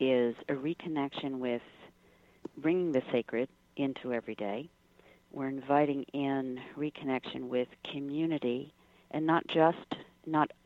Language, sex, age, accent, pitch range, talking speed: English, female, 50-69, American, 125-145 Hz, 115 wpm